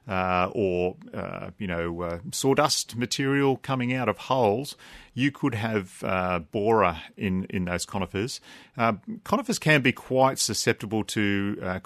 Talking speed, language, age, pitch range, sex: 145 wpm, English, 40-59, 95-115 Hz, male